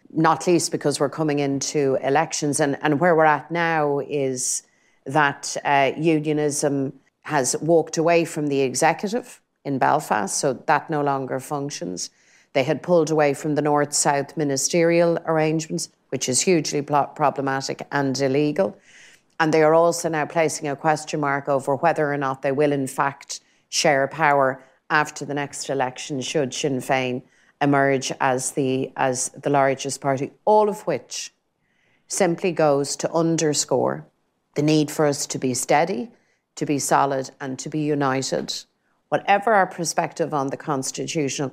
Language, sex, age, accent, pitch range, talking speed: English, female, 40-59, Irish, 135-160 Hz, 150 wpm